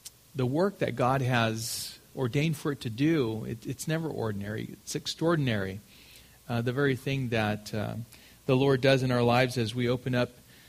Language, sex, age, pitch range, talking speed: English, male, 40-59, 130-155 Hz, 180 wpm